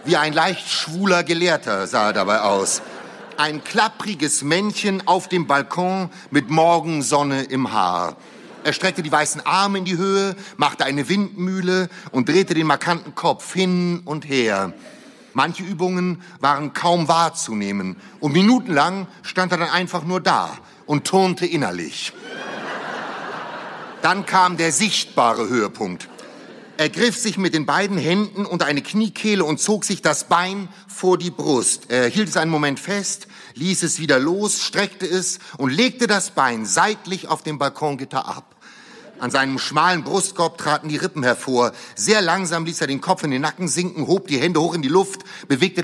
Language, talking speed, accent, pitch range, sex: German, 160 wpm, German, 150-190 Hz, male